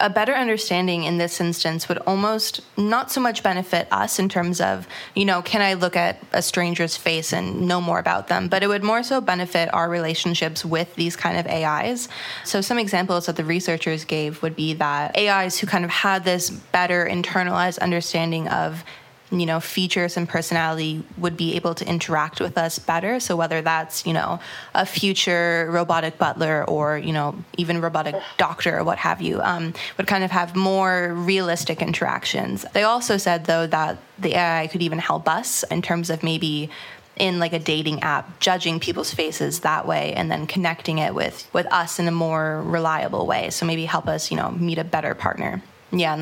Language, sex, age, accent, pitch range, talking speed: English, female, 20-39, American, 165-185 Hz, 195 wpm